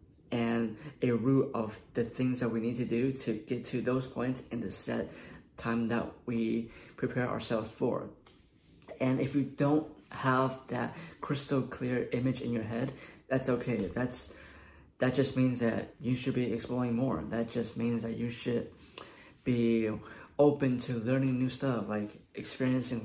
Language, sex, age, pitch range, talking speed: English, male, 20-39, 115-130 Hz, 165 wpm